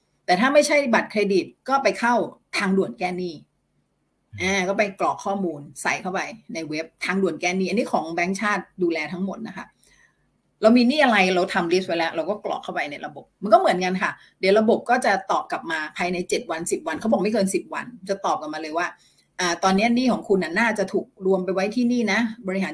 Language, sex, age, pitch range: Thai, female, 30-49, 180-225 Hz